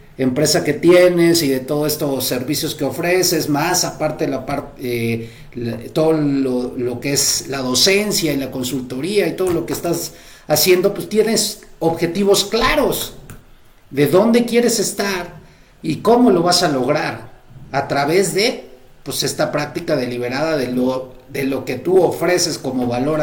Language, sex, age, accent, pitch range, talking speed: Spanish, male, 40-59, Mexican, 130-175 Hz, 160 wpm